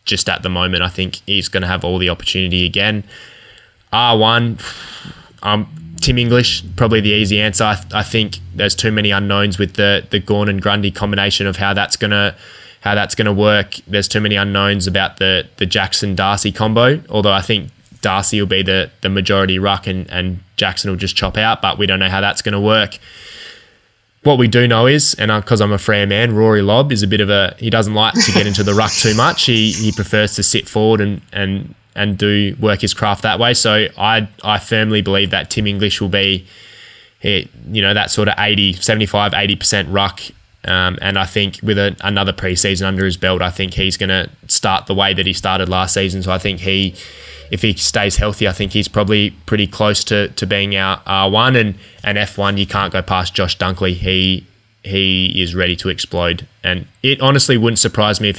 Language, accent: English, Australian